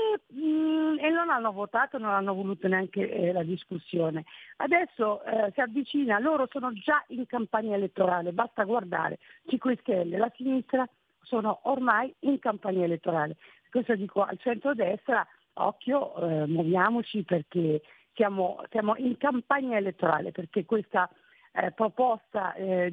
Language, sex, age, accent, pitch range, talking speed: Italian, female, 50-69, native, 175-230 Hz, 130 wpm